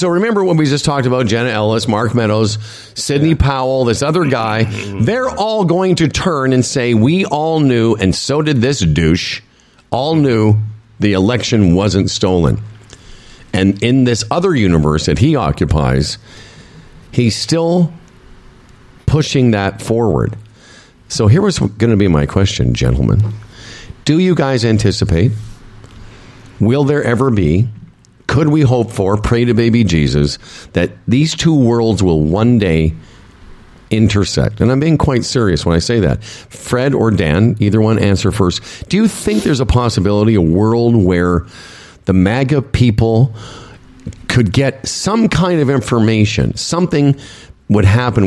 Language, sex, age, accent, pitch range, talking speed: English, male, 50-69, American, 100-130 Hz, 150 wpm